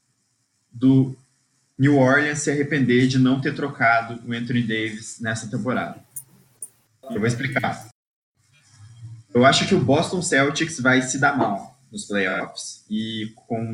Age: 20-39